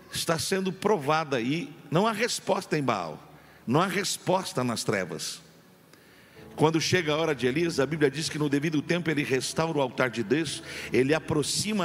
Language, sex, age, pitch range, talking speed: Portuguese, male, 50-69, 135-180 Hz, 175 wpm